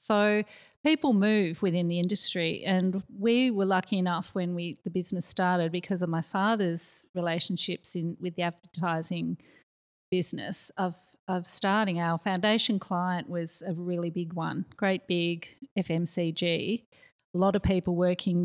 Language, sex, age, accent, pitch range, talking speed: English, female, 40-59, Australian, 175-205 Hz, 145 wpm